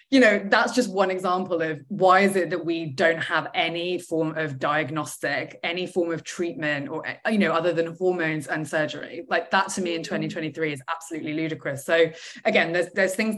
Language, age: English, 20-39